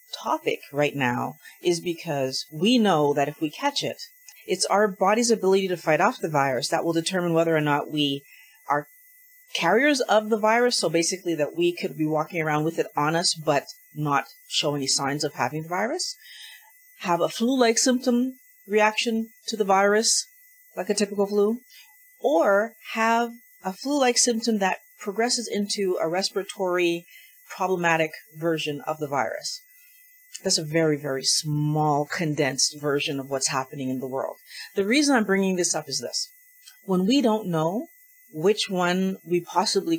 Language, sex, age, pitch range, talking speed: English, female, 40-59, 160-240 Hz, 165 wpm